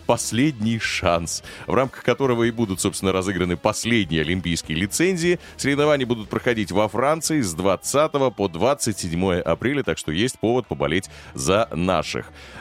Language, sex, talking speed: Russian, male, 140 wpm